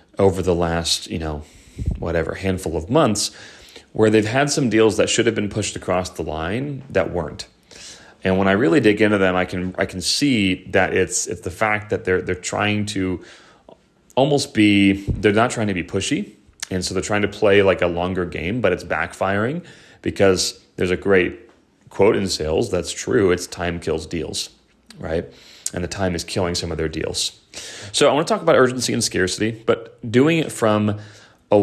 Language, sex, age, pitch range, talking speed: English, male, 30-49, 90-110 Hz, 195 wpm